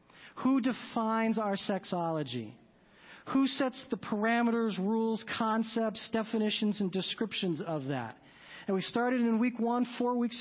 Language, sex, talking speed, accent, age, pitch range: English, male, 135 wpm, American, 40-59, 180-235 Hz